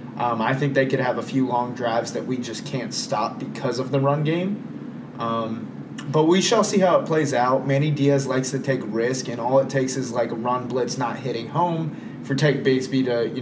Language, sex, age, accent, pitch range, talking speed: English, male, 20-39, American, 120-145 Hz, 235 wpm